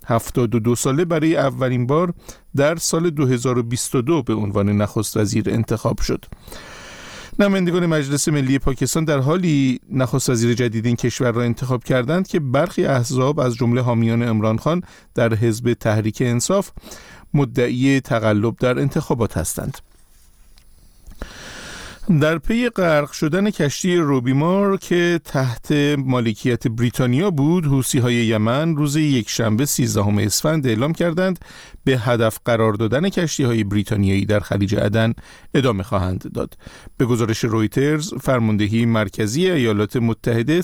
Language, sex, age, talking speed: Persian, male, 50-69, 130 wpm